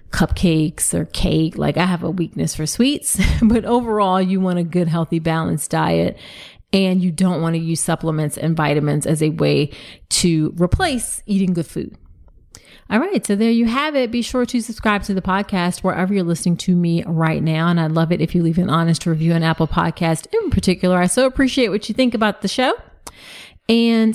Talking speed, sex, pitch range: 205 wpm, female, 170-220 Hz